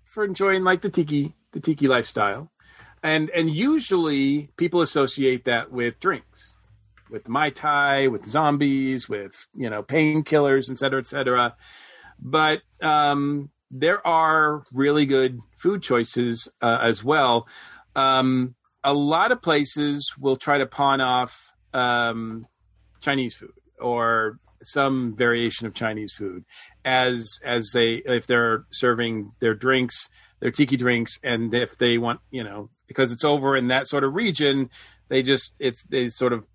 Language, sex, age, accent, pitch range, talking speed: English, male, 40-59, American, 120-145 Hz, 145 wpm